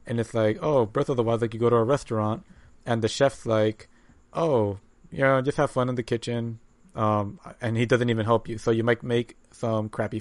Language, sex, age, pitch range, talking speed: English, male, 30-49, 110-120 Hz, 240 wpm